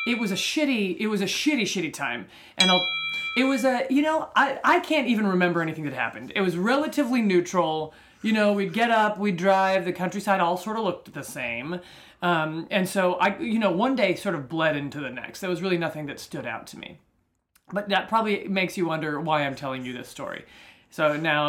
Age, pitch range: 30-49, 175-235 Hz